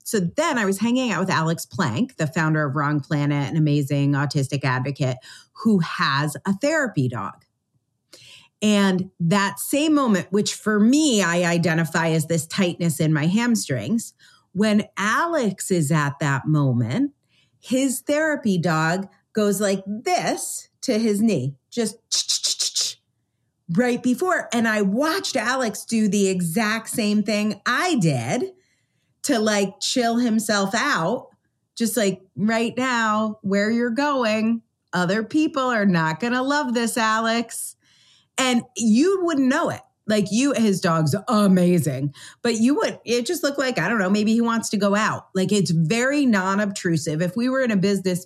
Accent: American